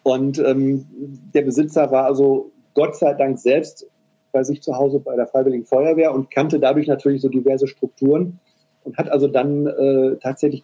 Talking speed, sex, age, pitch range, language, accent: 175 wpm, male, 40-59, 130-150 Hz, German, German